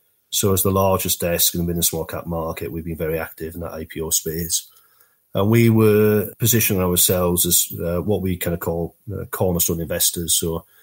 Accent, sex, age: British, male, 40-59